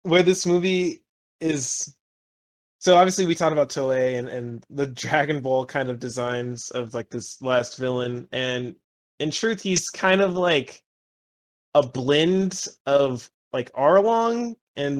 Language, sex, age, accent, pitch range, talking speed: English, male, 20-39, American, 125-155 Hz, 145 wpm